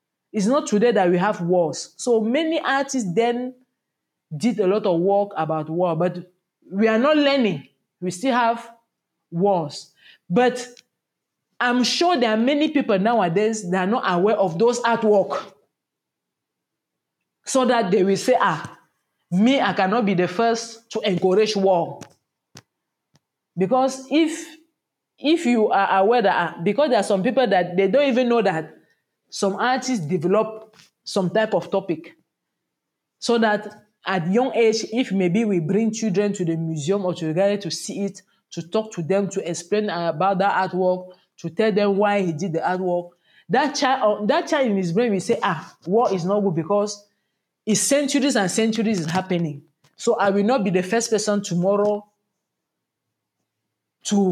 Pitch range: 185-235 Hz